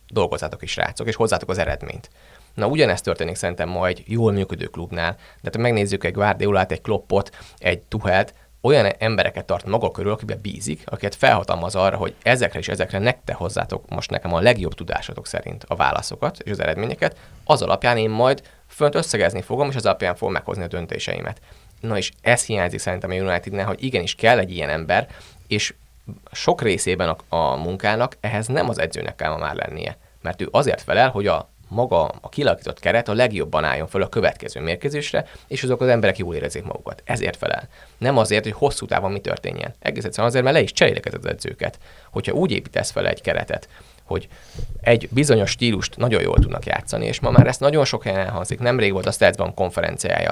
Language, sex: Hungarian, male